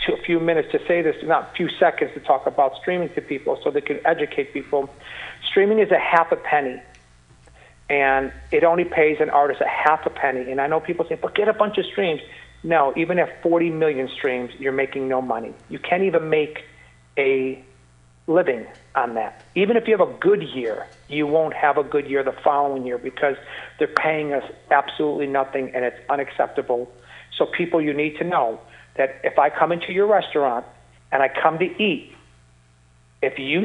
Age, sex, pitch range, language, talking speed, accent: 50-69, male, 135-195 Hz, English, 200 wpm, American